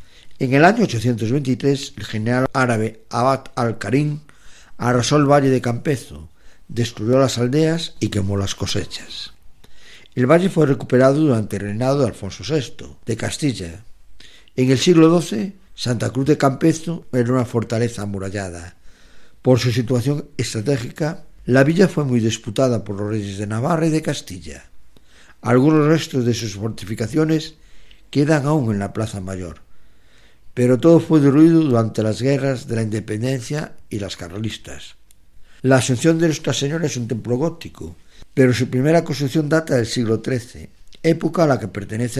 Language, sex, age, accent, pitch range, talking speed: Spanish, male, 50-69, Spanish, 105-145 Hz, 155 wpm